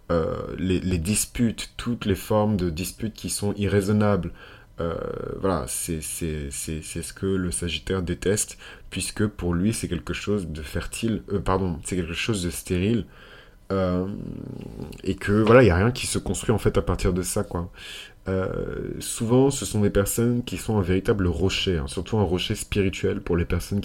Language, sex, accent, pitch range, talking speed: French, male, French, 85-100 Hz, 190 wpm